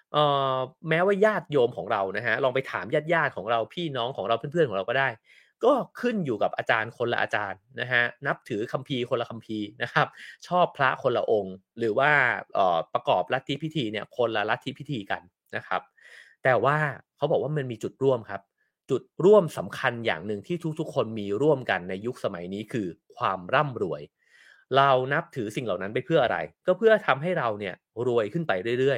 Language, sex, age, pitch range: English, male, 30-49, 115-165 Hz